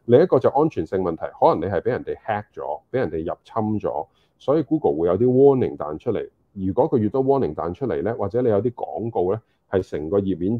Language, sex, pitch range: Chinese, male, 90-125 Hz